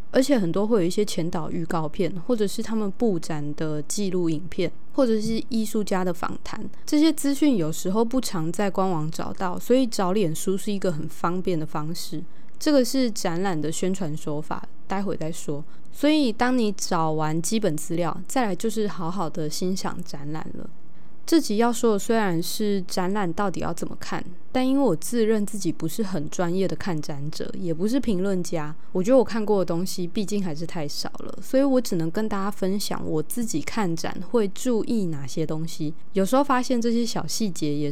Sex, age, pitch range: female, 20-39, 165-220 Hz